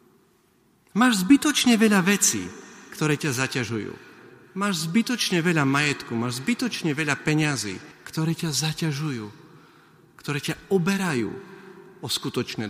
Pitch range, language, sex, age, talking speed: 120-170 Hz, Slovak, male, 40-59, 110 wpm